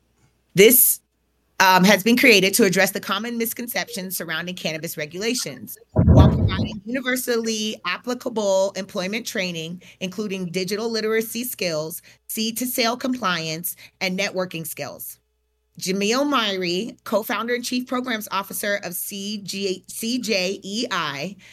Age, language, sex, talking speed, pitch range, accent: 30-49, English, female, 105 wpm, 180-225 Hz, American